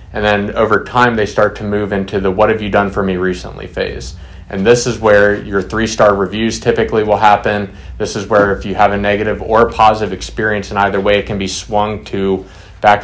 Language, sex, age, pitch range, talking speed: English, male, 30-49, 95-110 Hz, 220 wpm